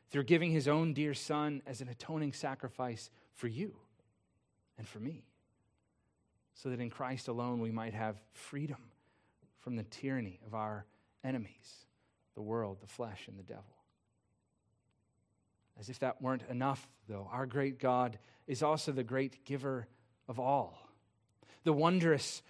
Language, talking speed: English, 145 wpm